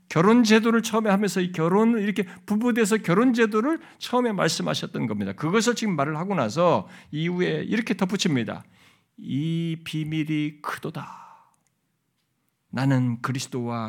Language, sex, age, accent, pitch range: Korean, male, 50-69, native, 145-205 Hz